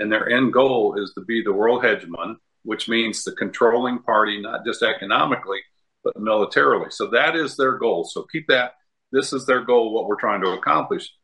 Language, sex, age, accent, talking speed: English, male, 50-69, American, 200 wpm